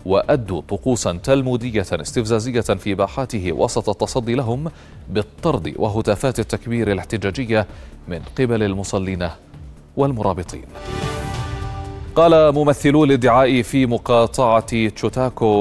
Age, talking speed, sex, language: 30-49, 90 wpm, male, Arabic